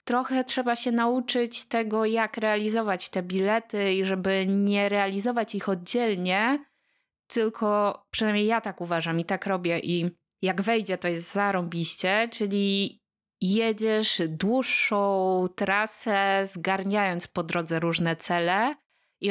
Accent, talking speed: native, 120 wpm